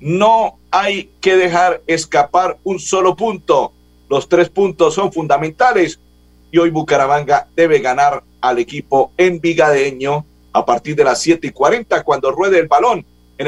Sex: male